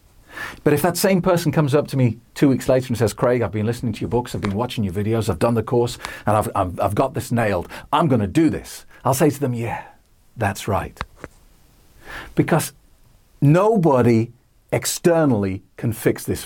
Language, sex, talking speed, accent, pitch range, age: English, male, 200 wpm, British, 105-140 Hz, 50-69